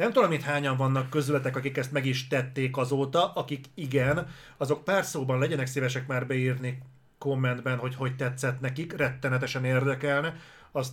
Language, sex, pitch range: Hungarian, male, 125-145 Hz